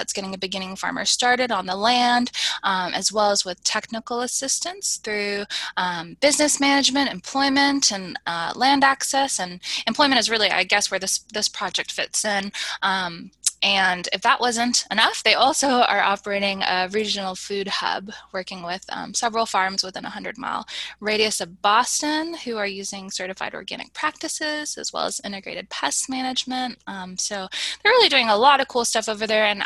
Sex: female